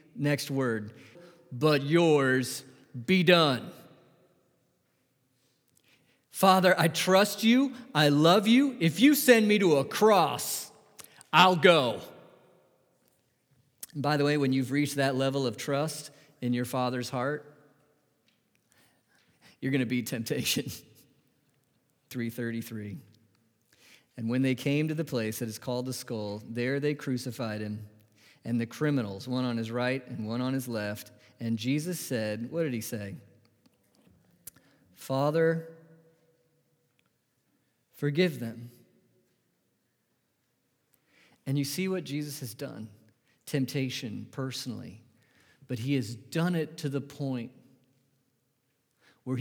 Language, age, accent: English, 40-59, American